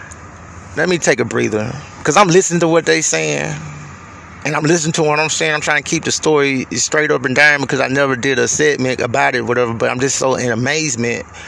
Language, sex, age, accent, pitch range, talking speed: English, male, 30-49, American, 115-155 Hz, 230 wpm